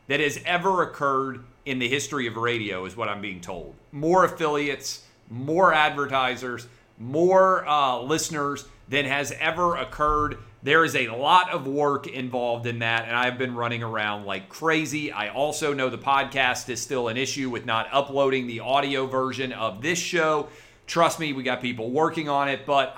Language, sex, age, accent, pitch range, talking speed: English, male, 40-59, American, 120-150 Hz, 180 wpm